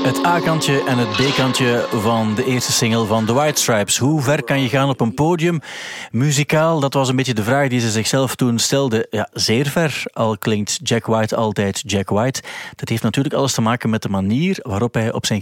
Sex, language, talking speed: male, Dutch, 220 wpm